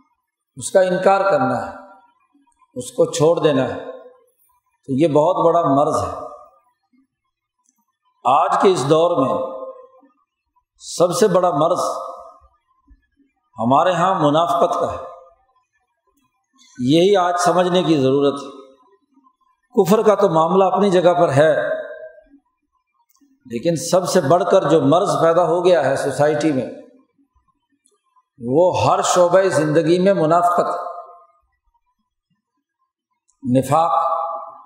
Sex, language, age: male, Urdu, 50-69